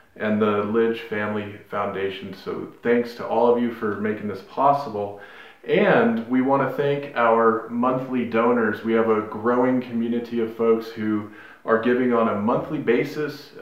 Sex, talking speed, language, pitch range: male, 165 wpm, English, 110-125 Hz